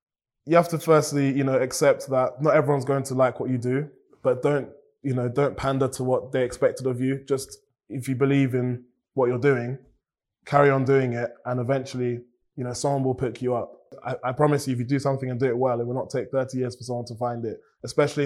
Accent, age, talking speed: British, 20-39, 240 wpm